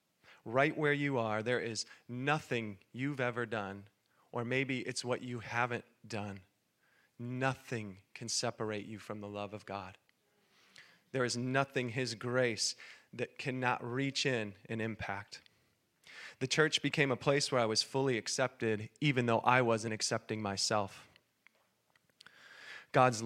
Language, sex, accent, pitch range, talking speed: English, male, American, 115-145 Hz, 140 wpm